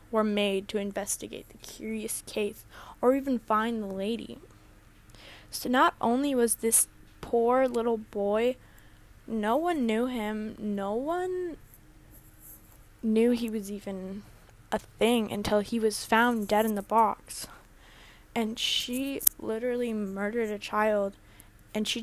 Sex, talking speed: female, 130 wpm